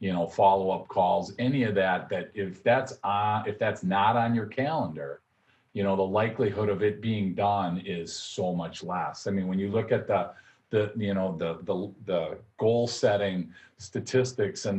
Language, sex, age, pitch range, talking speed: English, male, 40-59, 90-115 Hz, 190 wpm